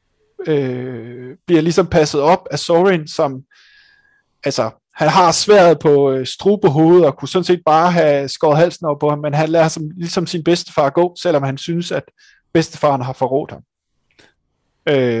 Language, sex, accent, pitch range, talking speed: Danish, male, native, 145-185 Hz, 170 wpm